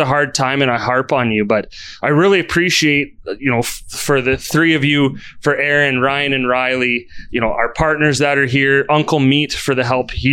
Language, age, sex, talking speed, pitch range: English, 30-49, male, 215 wpm, 120-150 Hz